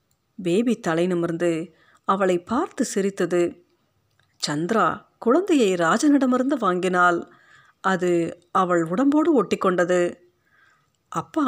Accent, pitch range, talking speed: native, 175-240 Hz, 75 wpm